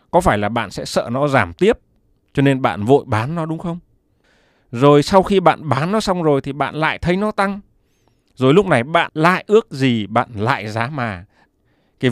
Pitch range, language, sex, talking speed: 105-150 Hz, Vietnamese, male, 215 wpm